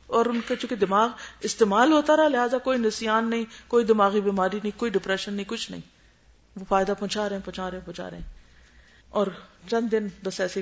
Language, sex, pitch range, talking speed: Urdu, female, 180-270 Hz, 200 wpm